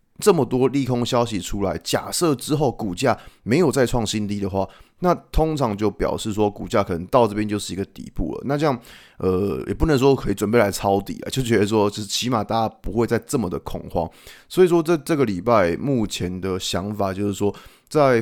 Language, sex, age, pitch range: Chinese, male, 20-39, 95-120 Hz